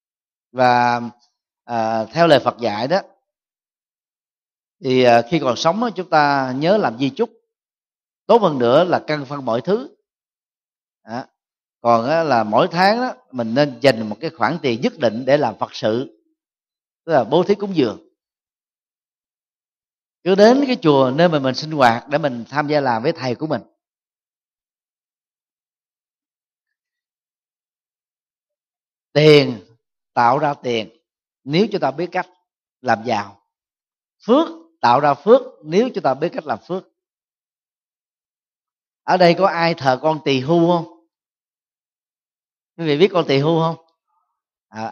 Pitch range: 140-195 Hz